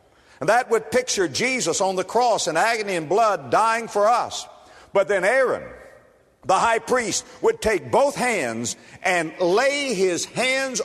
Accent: American